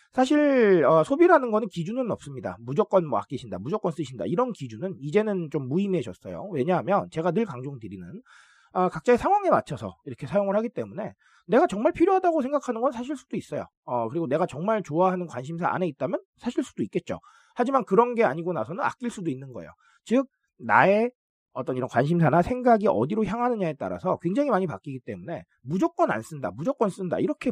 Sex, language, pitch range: male, Korean, 155-240 Hz